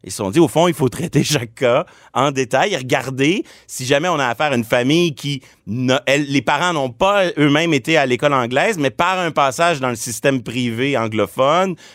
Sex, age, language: male, 30-49, French